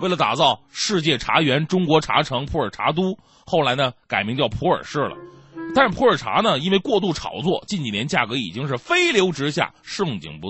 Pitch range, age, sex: 145-210 Hz, 20-39, male